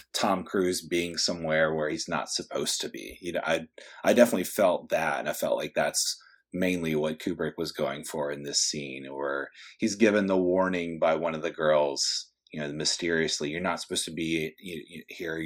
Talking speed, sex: 195 wpm, male